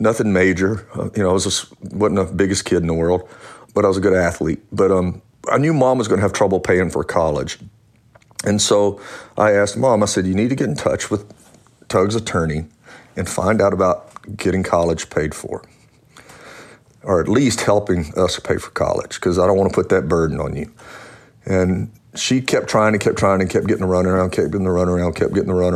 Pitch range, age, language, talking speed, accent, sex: 90-105 Hz, 40-59, English, 230 wpm, American, male